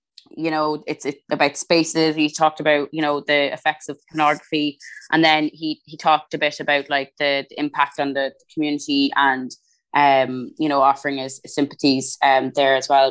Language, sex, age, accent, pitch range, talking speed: English, female, 20-39, Irish, 145-170 Hz, 195 wpm